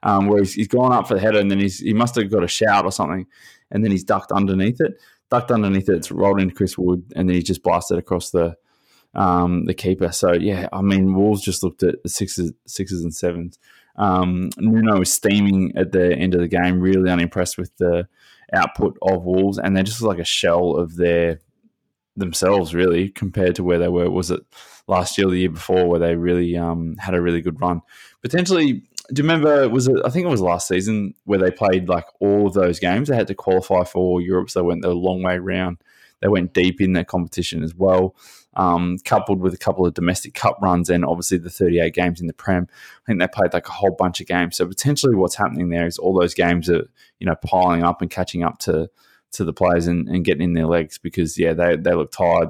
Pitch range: 90-100 Hz